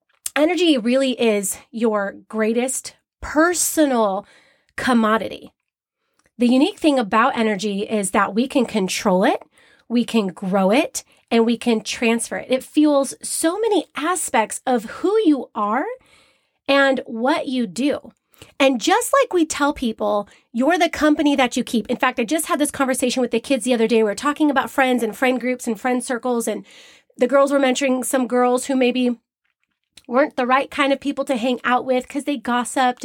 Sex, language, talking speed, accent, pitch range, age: female, English, 180 wpm, American, 230-285 Hz, 30-49